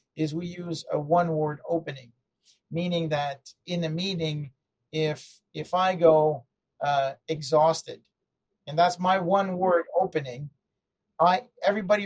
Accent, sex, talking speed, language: American, male, 120 wpm, English